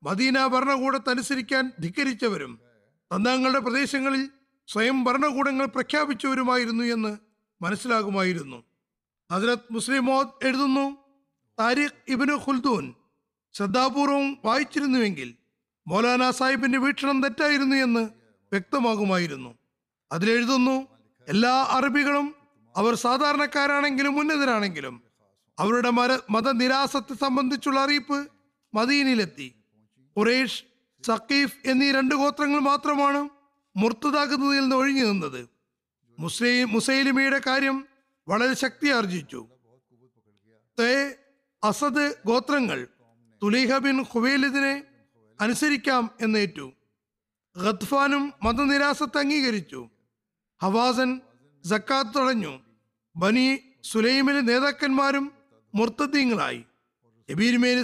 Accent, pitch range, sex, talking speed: native, 205-275 Hz, male, 55 wpm